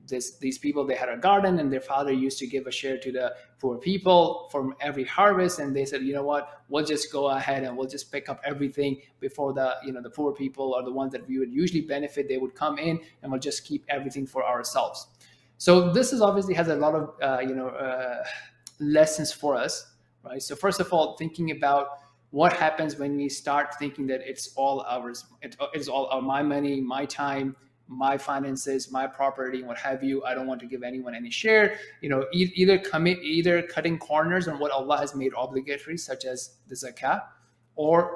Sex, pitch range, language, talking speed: male, 130-150 Hz, English, 215 wpm